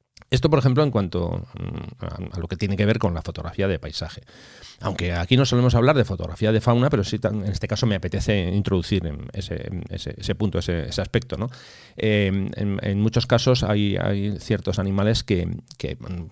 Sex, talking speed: male, 190 wpm